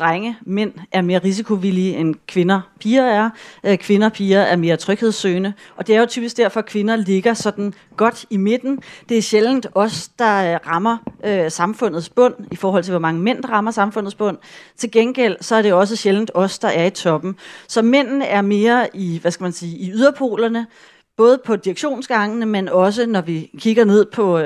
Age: 30-49